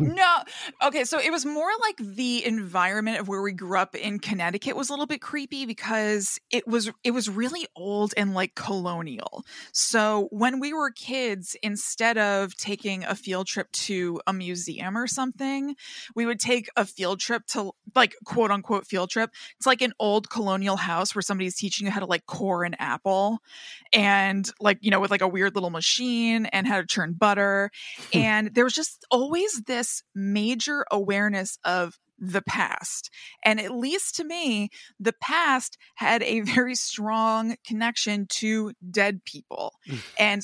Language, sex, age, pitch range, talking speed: English, female, 20-39, 195-240 Hz, 175 wpm